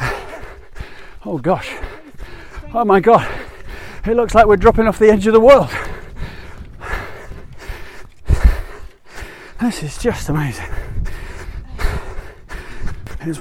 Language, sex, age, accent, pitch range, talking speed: English, male, 30-49, British, 130-180 Hz, 95 wpm